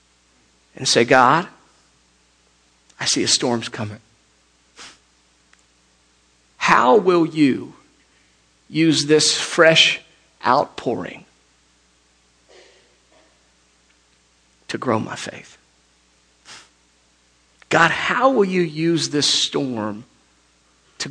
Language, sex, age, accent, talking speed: English, male, 50-69, American, 75 wpm